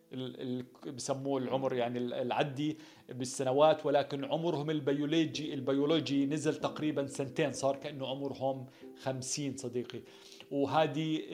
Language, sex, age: Arabic, male, 40-59